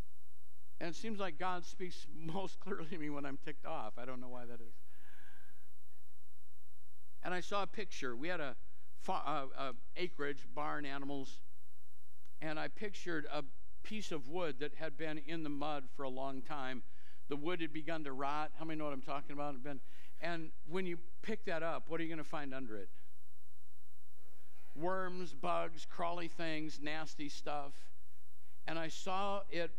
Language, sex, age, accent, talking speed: English, male, 60-79, American, 175 wpm